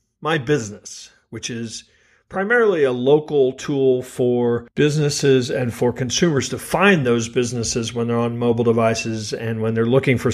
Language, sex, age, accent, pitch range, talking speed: English, male, 40-59, American, 120-150 Hz, 155 wpm